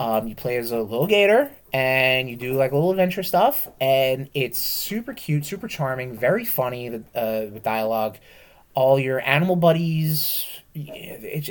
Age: 30-49